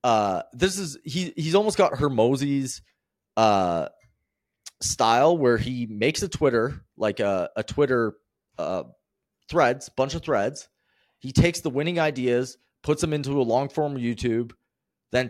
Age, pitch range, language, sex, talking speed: 30-49, 95-130 Hz, English, male, 145 wpm